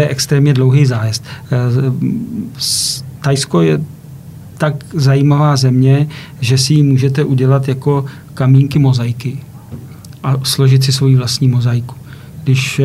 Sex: male